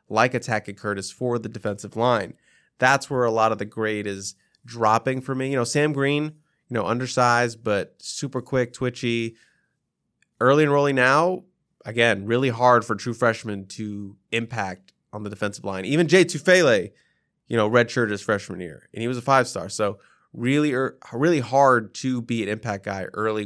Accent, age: American, 20-39